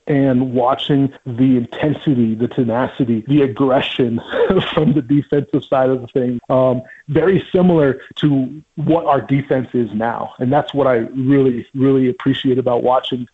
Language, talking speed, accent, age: English, 150 wpm, American, 30-49